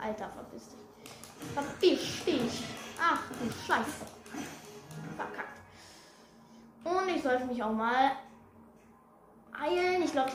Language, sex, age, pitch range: German, female, 10-29, 210-275 Hz